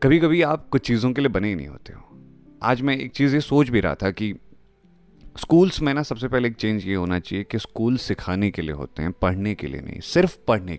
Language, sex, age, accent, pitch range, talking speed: Hindi, male, 30-49, native, 95-145 Hz, 250 wpm